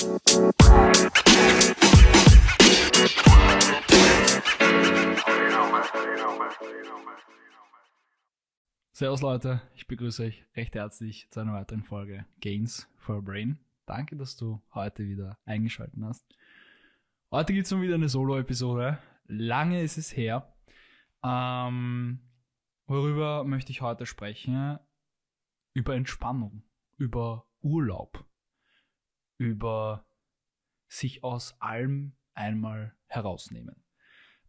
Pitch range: 110-135 Hz